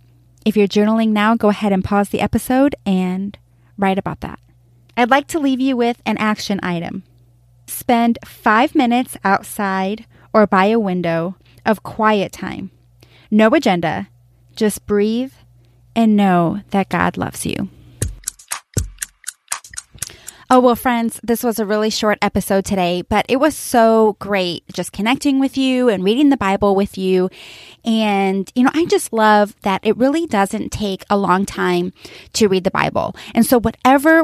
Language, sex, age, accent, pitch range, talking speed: English, female, 20-39, American, 190-245 Hz, 160 wpm